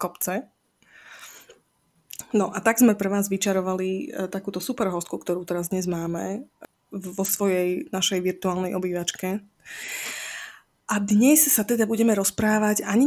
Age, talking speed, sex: 20-39, 125 wpm, female